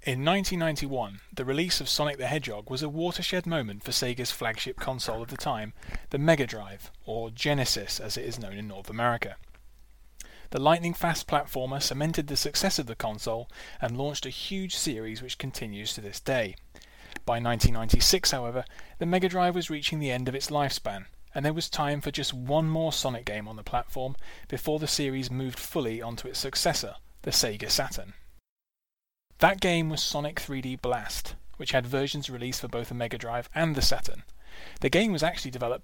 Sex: male